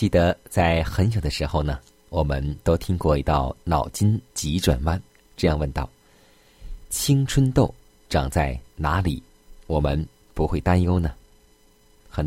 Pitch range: 75-100 Hz